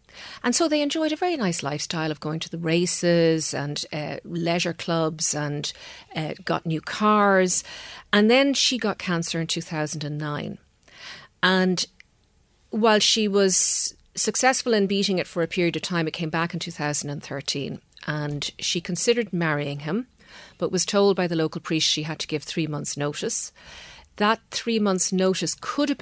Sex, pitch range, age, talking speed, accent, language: female, 155-205 Hz, 40-59, 165 wpm, Irish, English